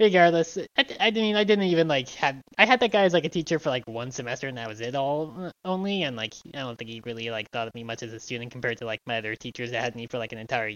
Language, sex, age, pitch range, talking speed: English, male, 10-29, 120-175 Hz, 310 wpm